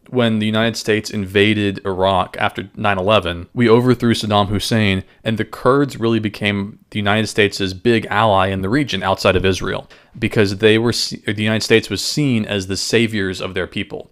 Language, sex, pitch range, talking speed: English, male, 100-115 Hz, 185 wpm